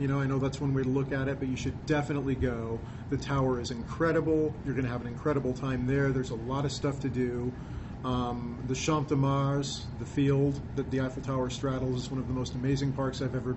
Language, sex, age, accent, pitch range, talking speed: English, male, 40-59, American, 120-140 Hz, 250 wpm